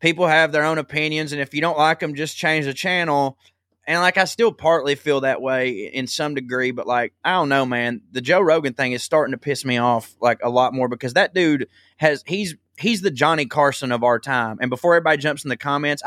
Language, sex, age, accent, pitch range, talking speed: English, male, 20-39, American, 130-155 Hz, 245 wpm